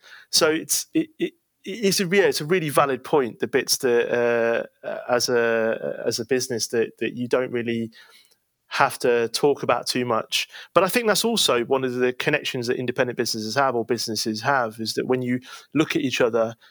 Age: 30-49